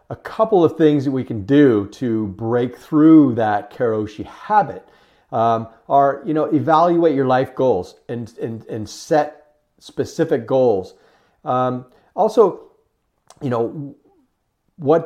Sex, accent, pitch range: male, American, 110-140 Hz